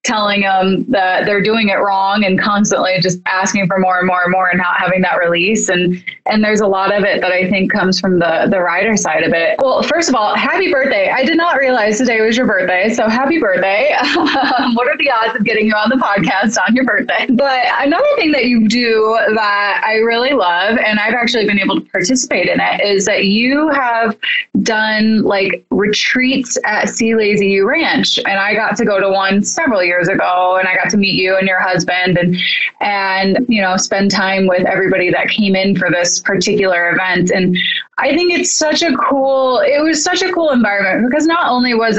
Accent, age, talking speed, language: American, 20-39, 215 wpm, English